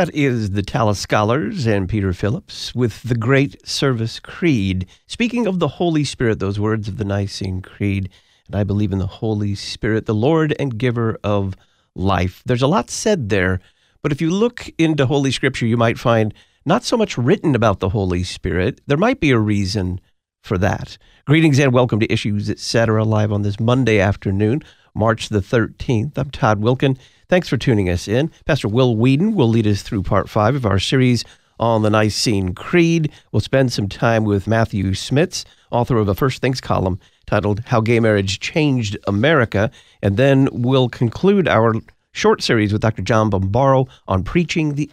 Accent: American